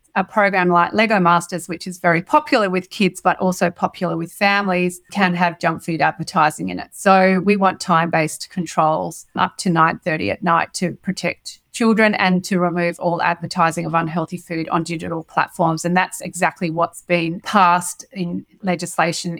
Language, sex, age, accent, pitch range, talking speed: English, female, 30-49, Australian, 175-195 Hz, 170 wpm